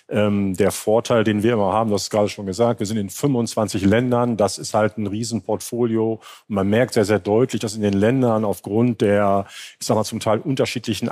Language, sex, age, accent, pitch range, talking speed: German, male, 40-59, German, 100-115 Hz, 215 wpm